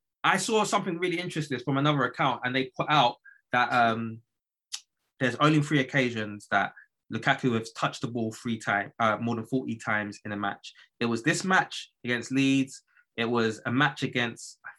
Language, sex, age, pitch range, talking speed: English, male, 20-39, 115-150 Hz, 180 wpm